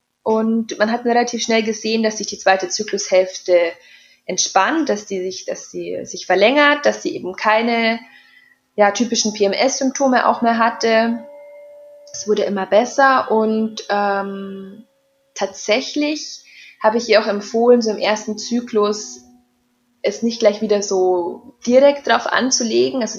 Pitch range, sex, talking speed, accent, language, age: 200-240 Hz, female, 130 wpm, German, German, 20-39